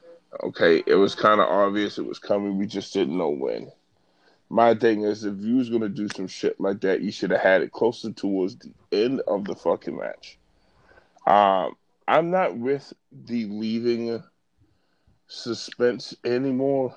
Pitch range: 105-125 Hz